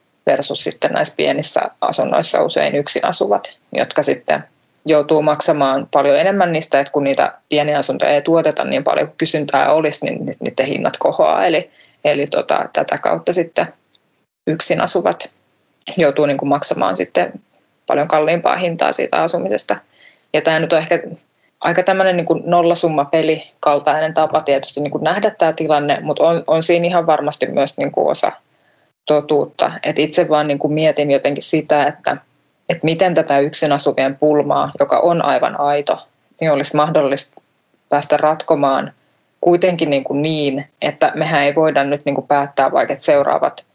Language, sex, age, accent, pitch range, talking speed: Finnish, female, 20-39, native, 145-165 Hz, 155 wpm